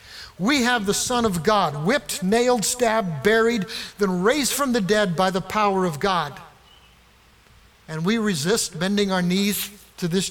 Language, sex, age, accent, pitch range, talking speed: English, male, 60-79, American, 175-220 Hz, 165 wpm